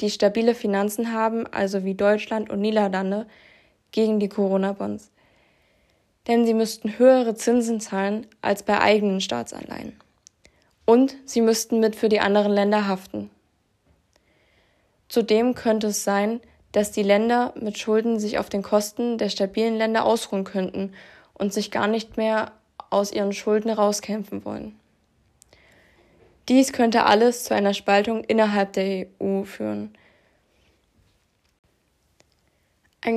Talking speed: 125 wpm